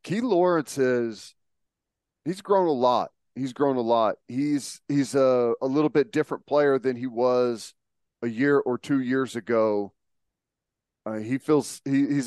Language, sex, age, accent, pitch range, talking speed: English, male, 40-59, American, 120-145 Hz, 145 wpm